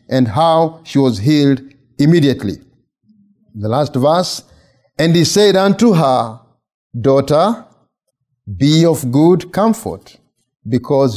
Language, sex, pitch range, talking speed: English, male, 130-175 Hz, 105 wpm